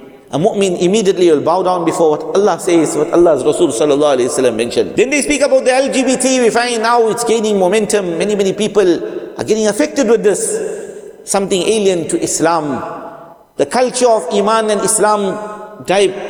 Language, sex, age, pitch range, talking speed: English, male, 50-69, 195-280 Hz, 175 wpm